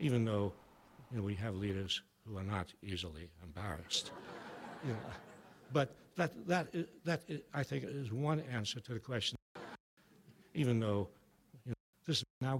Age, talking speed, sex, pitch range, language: 60-79, 130 wpm, male, 105-145 Hz, English